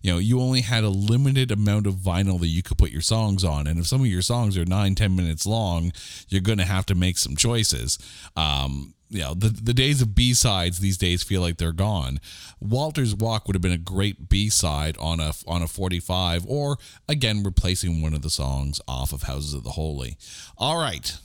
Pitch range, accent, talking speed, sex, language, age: 85-115 Hz, American, 220 wpm, male, English, 40-59